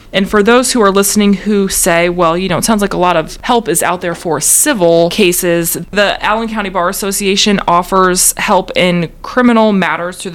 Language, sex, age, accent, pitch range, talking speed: English, female, 20-39, American, 165-200 Hz, 205 wpm